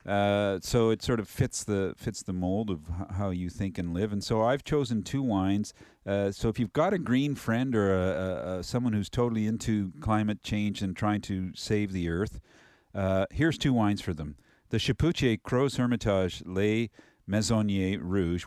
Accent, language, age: American, English, 50-69